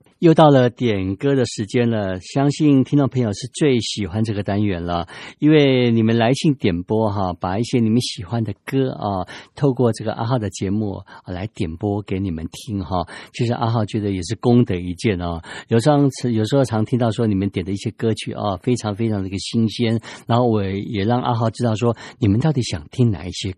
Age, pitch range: 50-69, 95-120 Hz